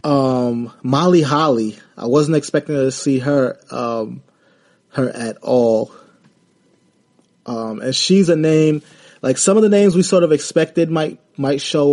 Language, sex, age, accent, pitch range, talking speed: English, male, 20-39, American, 120-145 Hz, 155 wpm